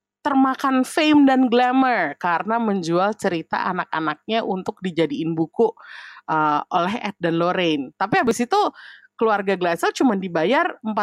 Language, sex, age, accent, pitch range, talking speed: Indonesian, female, 30-49, native, 170-270 Hz, 125 wpm